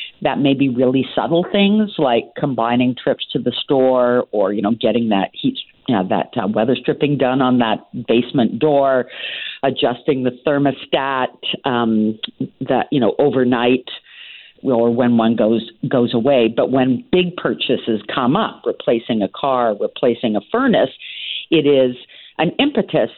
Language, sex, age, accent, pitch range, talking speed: English, female, 50-69, American, 125-155 Hz, 155 wpm